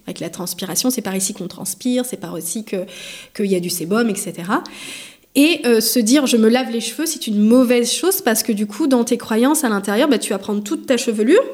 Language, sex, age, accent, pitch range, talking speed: French, female, 20-39, French, 200-255 Hz, 255 wpm